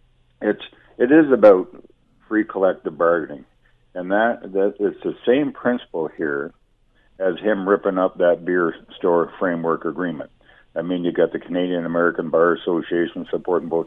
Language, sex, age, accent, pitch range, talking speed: English, male, 50-69, American, 80-100 Hz, 150 wpm